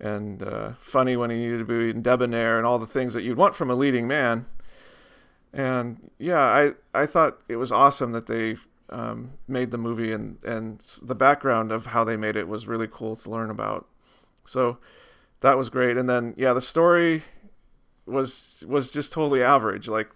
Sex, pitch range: male, 115-130 Hz